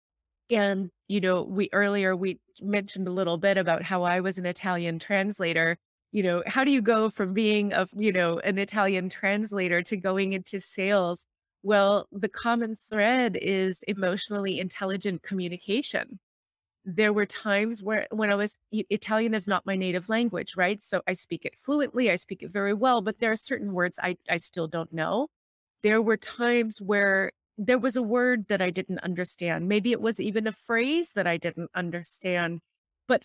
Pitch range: 185-225 Hz